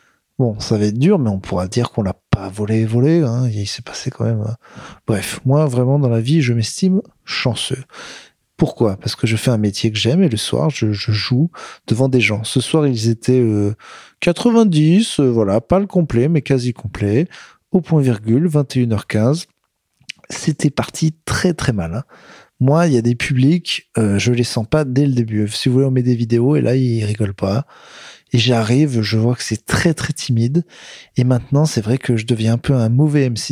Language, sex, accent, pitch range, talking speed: French, male, French, 115-150 Hz, 215 wpm